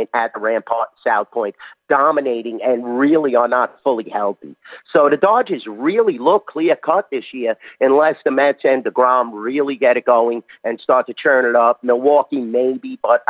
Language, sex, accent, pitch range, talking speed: English, male, American, 120-145 Hz, 175 wpm